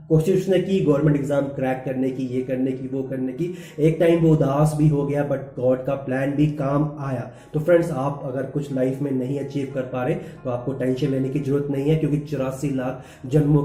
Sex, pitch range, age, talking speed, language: male, 135-155 Hz, 20-39, 230 wpm, Hindi